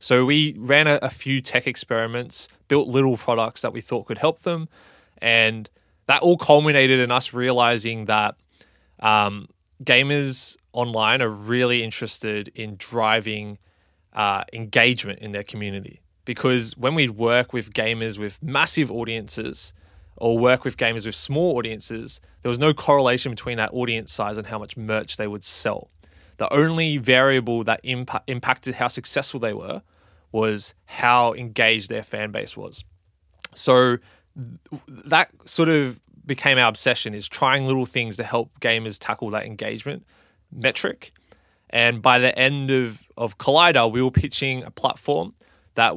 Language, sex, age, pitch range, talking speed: English, male, 20-39, 110-130 Hz, 150 wpm